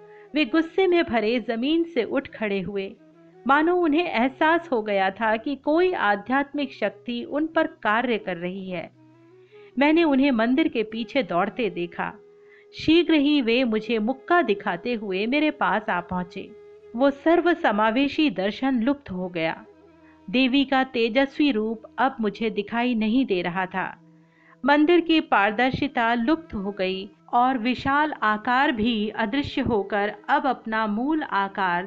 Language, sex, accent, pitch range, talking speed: Hindi, female, native, 200-290 Hz, 145 wpm